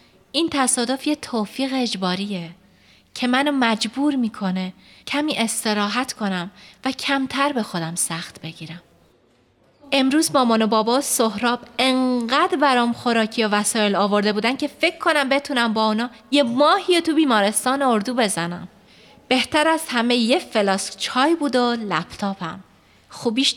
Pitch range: 200-275 Hz